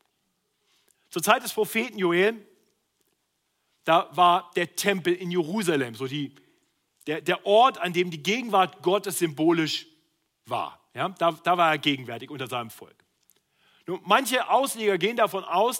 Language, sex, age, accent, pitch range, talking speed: German, male, 40-59, German, 155-205 Hz, 145 wpm